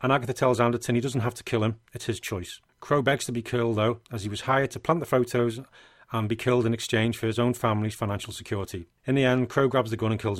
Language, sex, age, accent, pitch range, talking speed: English, male, 40-59, British, 110-125 Hz, 270 wpm